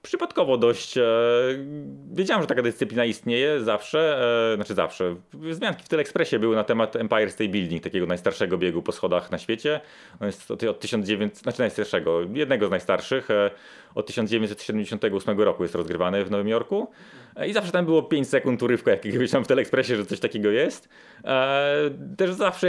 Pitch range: 100-140 Hz